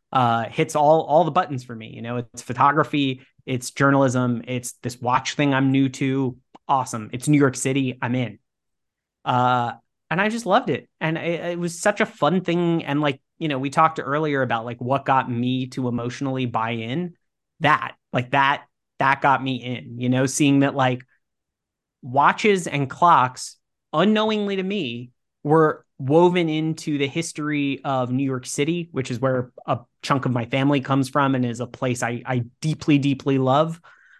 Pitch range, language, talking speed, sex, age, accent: 125-145 Hz, English, 185 wpm, male, 30-49, American